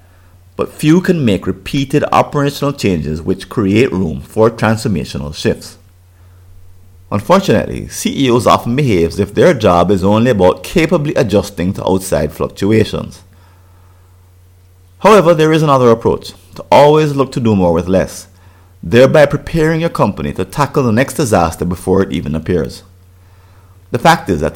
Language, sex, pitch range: English, male, 90-115 Hz